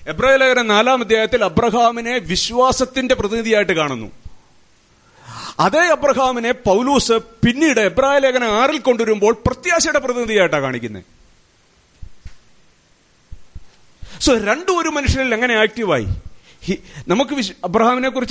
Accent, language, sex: Indian, English, male